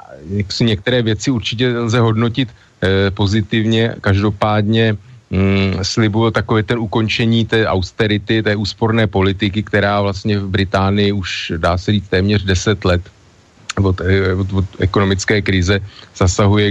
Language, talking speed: Slovak, 125 wpm